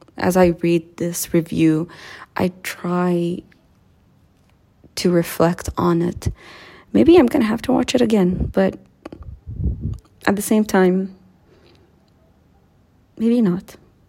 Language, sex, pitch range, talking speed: English, female, 165-220 Hz, 110 wpm